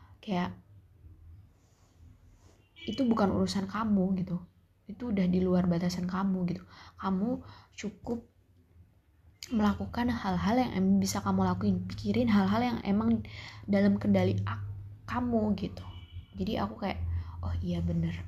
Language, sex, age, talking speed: Indonesian, female, 20-39, 120 wpm